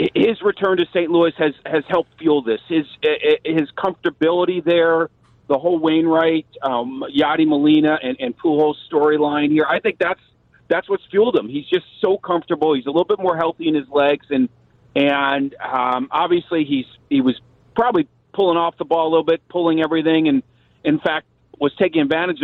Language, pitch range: English, 140-175 Hz